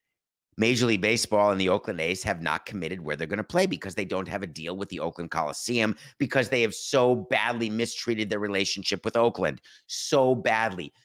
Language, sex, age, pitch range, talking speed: English, male, 50-69, 100-145 Hz, 200 wpm